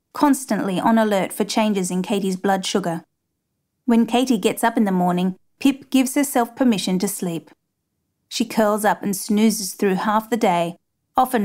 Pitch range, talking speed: 195-240 Hz, 170 wpm